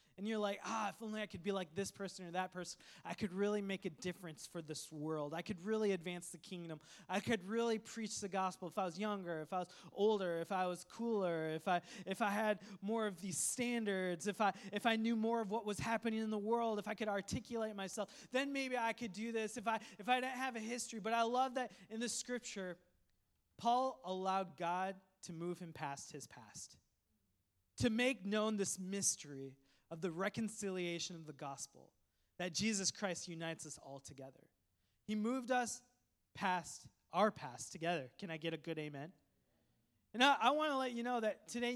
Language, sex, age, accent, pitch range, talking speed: English, male, 20-39, American, 175-230 Hz, 210 wpm